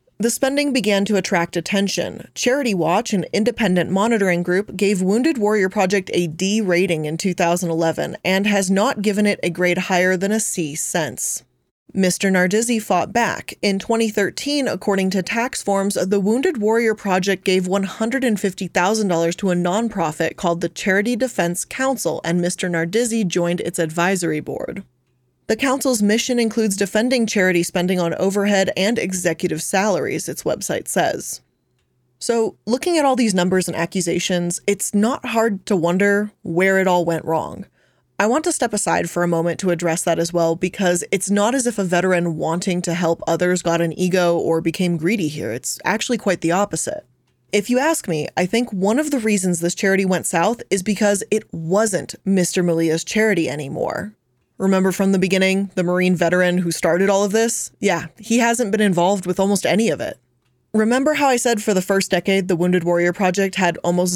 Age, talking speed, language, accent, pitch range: 20-39, 180 wpm, English, American, 175-215 Hz